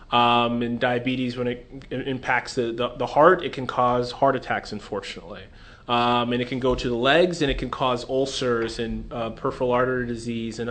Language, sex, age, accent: English, male, 30-49, American